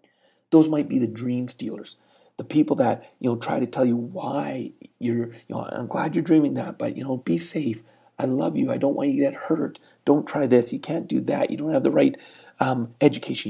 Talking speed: 235 wpm